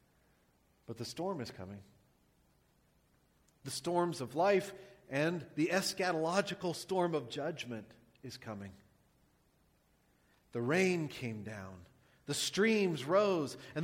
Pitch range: 135-215 Hz